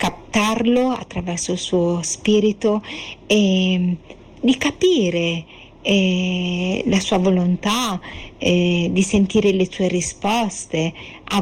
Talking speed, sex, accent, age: 100 wpm, female, native, 40-59